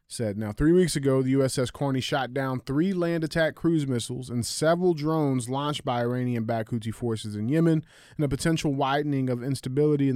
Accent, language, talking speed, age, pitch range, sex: American, English, 190 wpm, 20-39, 130-165 Hz, male